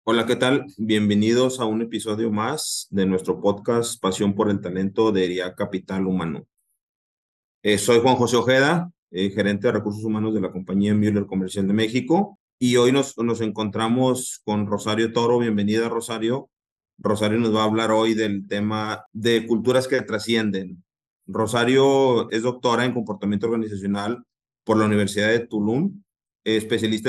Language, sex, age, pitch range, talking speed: Spanish, male, 30-49, 105-115 Hz, 155 wpm